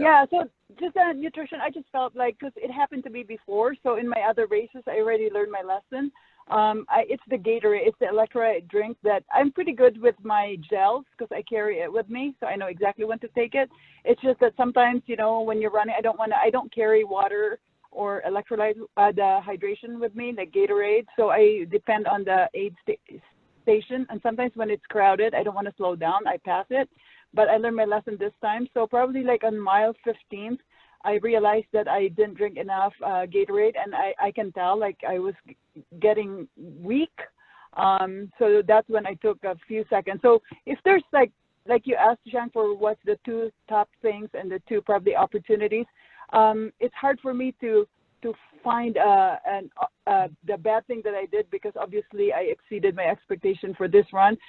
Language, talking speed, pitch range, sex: English, 210 wpm, 210-260 Hz, female